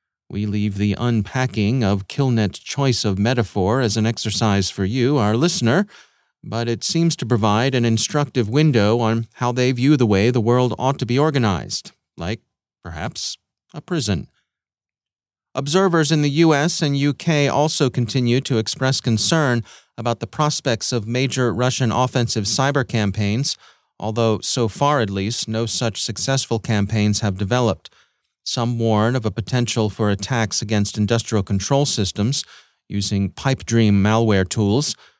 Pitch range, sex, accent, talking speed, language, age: 105-125 Hz, male, American, 150 wpm, English, 30-49